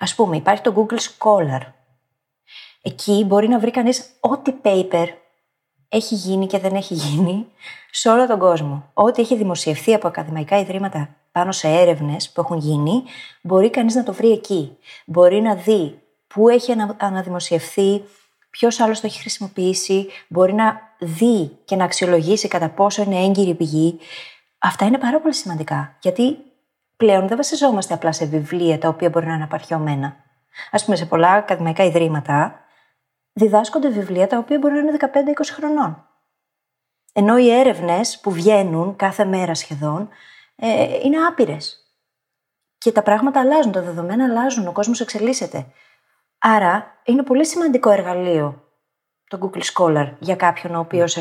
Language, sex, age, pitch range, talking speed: Greek, female, 30-49, 170-230 Hz, 155 wpm